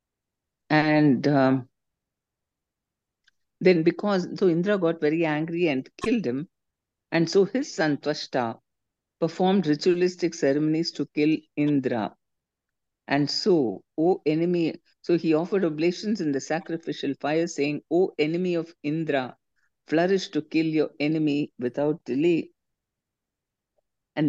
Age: 50-69